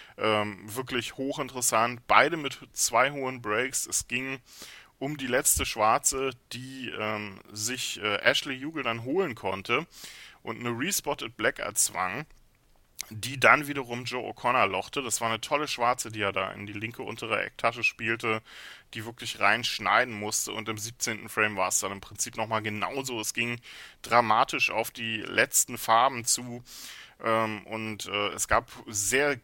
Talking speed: 155 wpm